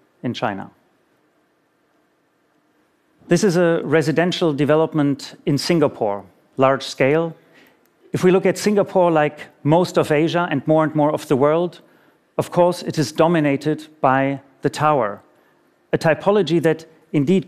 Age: 40-59